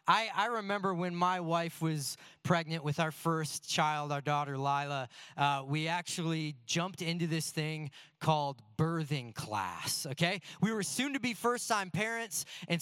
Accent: American